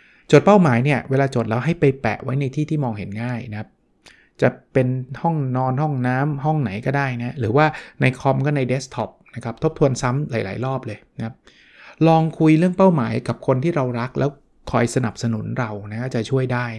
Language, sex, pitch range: Thai, male, 115-145 Hz